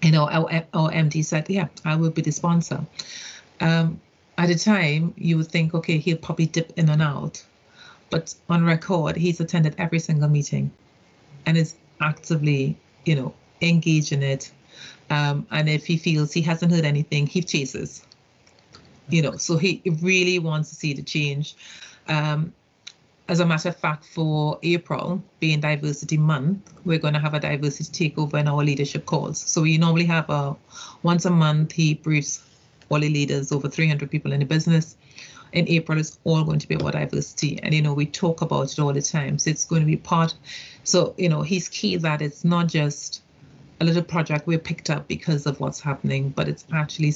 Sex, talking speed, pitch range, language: female, 190 wpm, 145-165 Hz, English